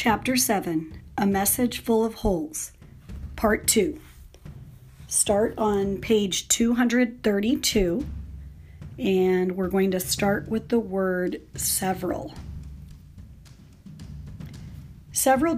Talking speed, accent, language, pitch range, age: 90 wpm, American, English, 175-230 Hz, 40-59